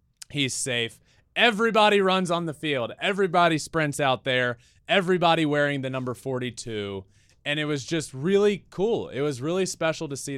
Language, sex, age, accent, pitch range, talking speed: English, male, 20-39, American, 110-155 Hz, 160 wpm